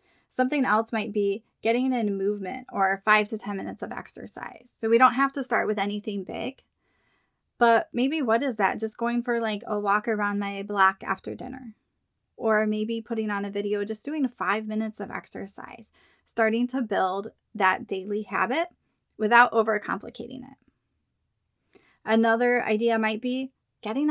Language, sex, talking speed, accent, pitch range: English, female, 160 wpm, American, 210-245 Hz